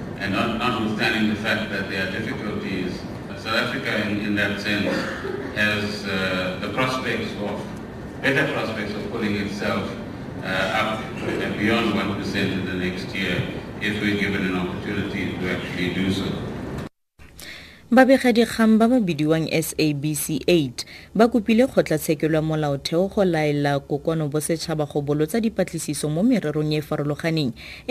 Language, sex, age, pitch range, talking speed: English, male, 30-49, 140-165 Hz, 145 wpm